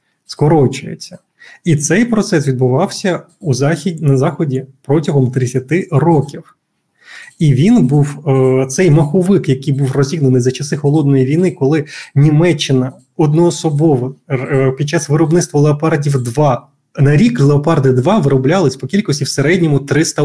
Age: 20-39